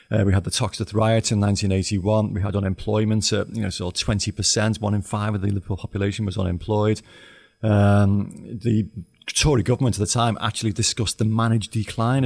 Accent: British